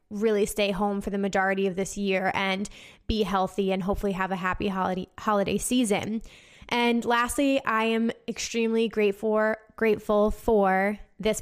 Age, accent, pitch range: 20-39, American, 195-225 Hz